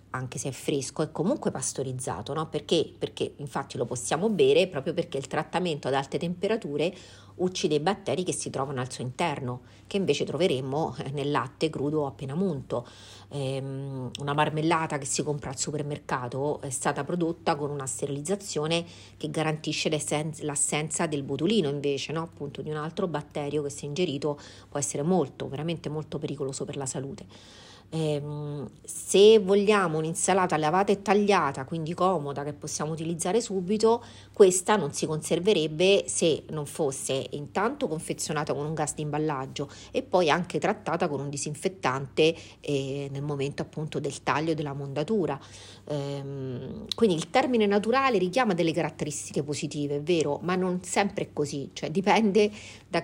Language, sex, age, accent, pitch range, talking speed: Italian, female, 40-59, native, 140-175 Hz, 155 wpm